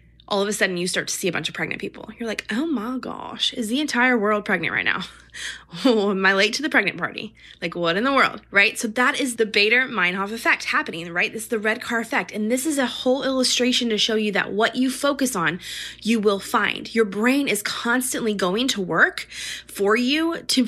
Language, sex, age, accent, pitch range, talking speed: English, female, 20-39, American, 205-275 Hz, 230 wpm